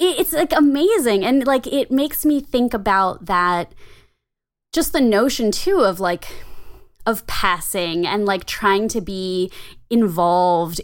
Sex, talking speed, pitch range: female, 140 wpm, 170-210 Hz